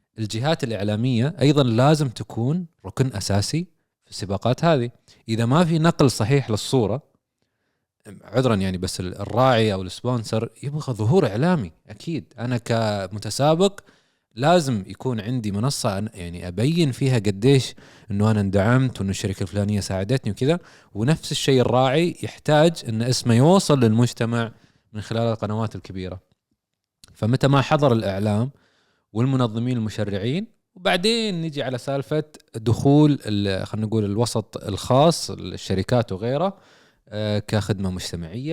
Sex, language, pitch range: male, Arabic, 105-140 Hz